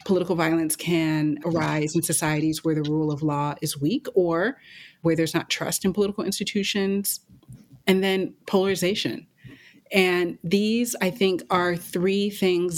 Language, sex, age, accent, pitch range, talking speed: English, female, 30-49, American, 155-180 Hz, 145 wpm